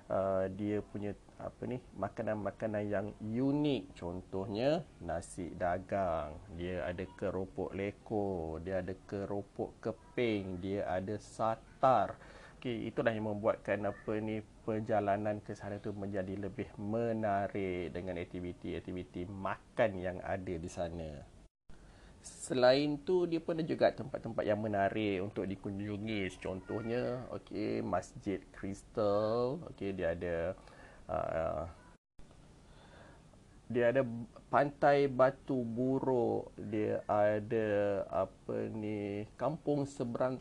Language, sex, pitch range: Malay, male, 95-110 Hz